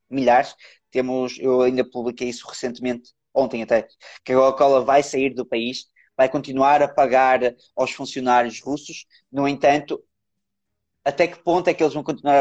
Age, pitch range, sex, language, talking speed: 20-39, 130-165 Hz, male, Portuguese, 160 wpm